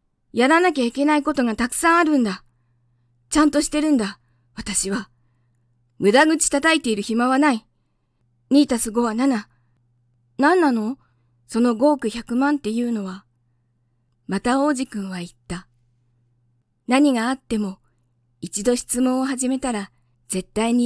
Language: Japanese